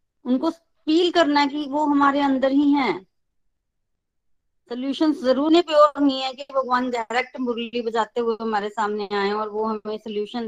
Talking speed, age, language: 160 wpm, 20-39, Hindi